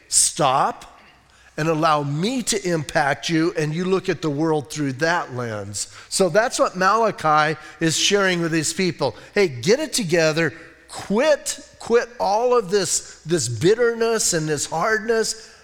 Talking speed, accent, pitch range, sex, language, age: 150 wpm, American, 150-195 Hz, male, English, 40-59